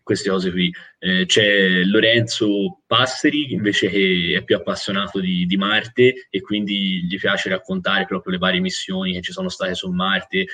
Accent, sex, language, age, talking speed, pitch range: native, male, Italian, 20-39, 175 wpm, 95-120 Hz